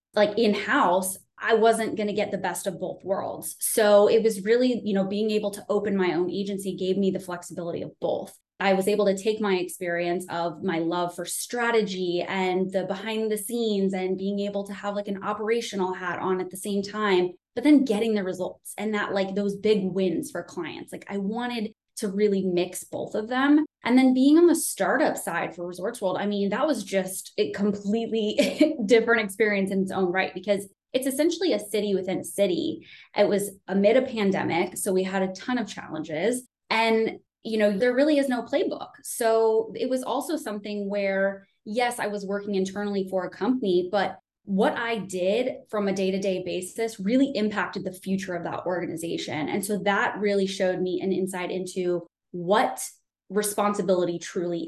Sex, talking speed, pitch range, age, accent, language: female, 195 wpm, 185-220 Hz, 20-39, American, English